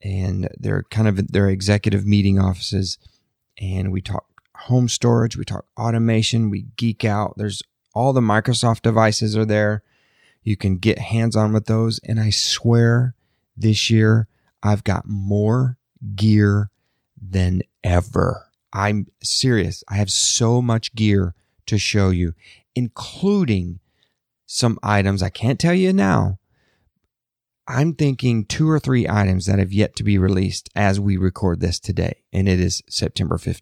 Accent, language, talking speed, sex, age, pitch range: American, English, 145 wpm, male, 30-49, 100-115 Hz